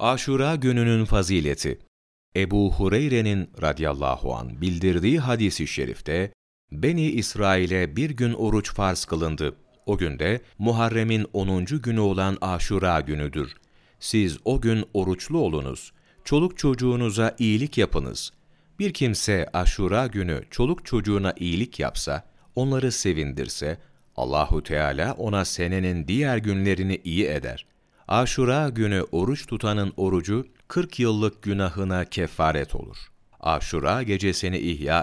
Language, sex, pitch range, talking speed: Turkish, male, 85-120 Hz, 115 wpm